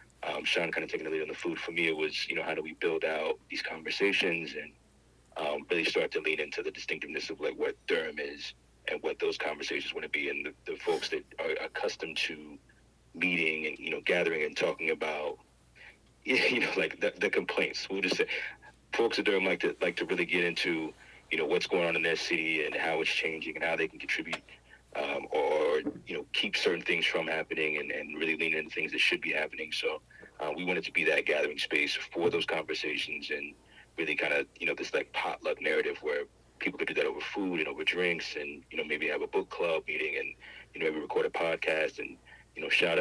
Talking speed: 235 wpm